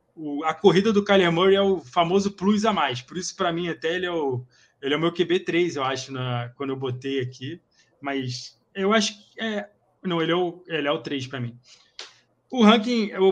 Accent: Brazilian